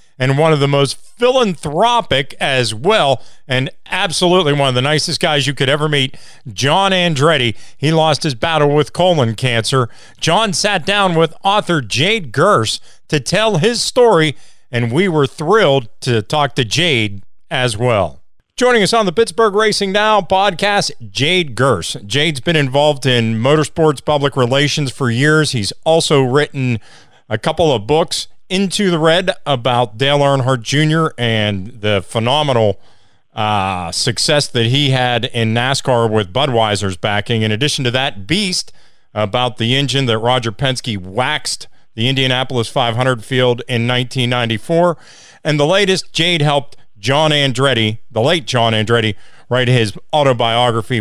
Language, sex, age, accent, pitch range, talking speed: English, male, 50-69, American, 120-160 Hz, 150 wpm